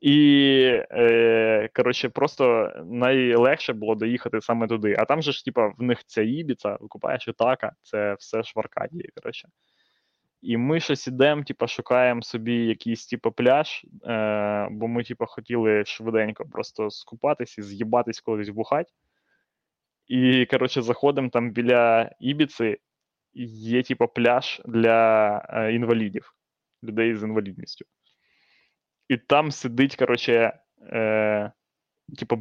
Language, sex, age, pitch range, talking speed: Ukrainian, male, 20-39, 115-135 Hz, 125 wpm